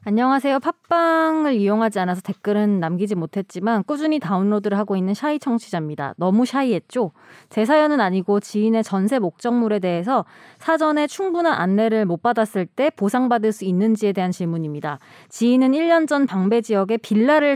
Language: Korean